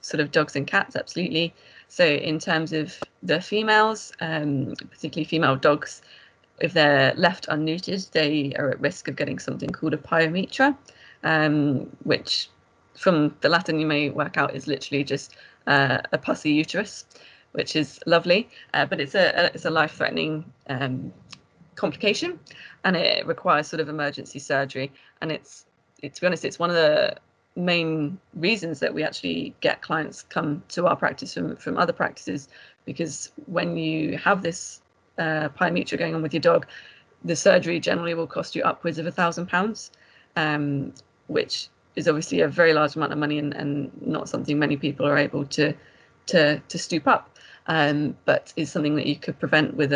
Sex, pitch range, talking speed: female, 145-170 Hz, 175 wpm